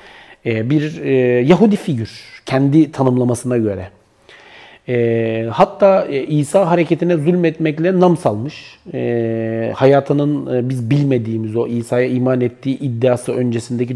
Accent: native